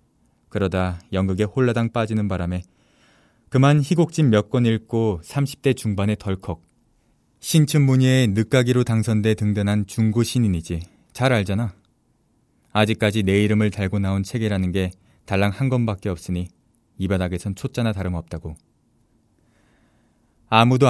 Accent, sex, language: native, male, Korean